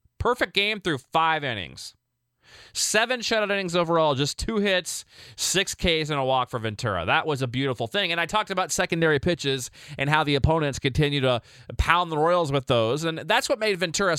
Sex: male